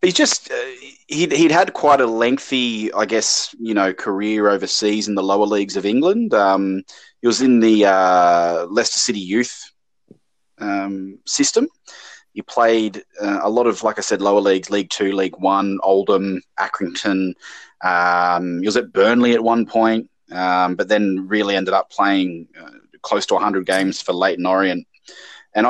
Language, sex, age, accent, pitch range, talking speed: English, male, 20-39, Australian, 95-115 Hz, 170 wpm